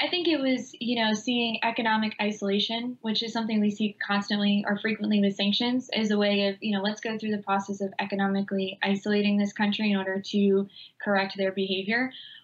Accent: American